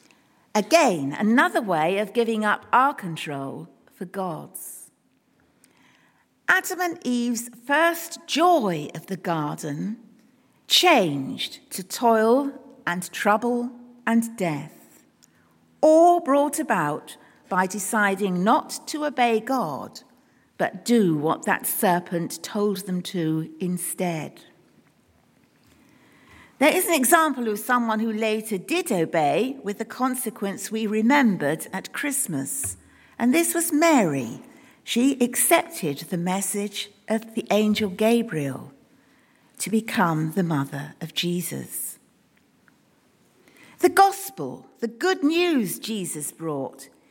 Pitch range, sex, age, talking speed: 180-275 Hz, female, 50-69, 110 wpm